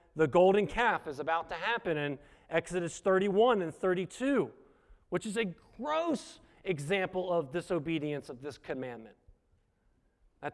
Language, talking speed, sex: English, 130 wpm, male